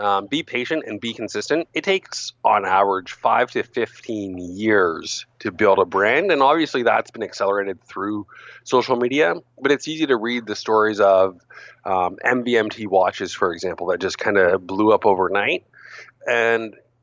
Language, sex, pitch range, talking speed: English, male, 100-120 Hz, 165 wpm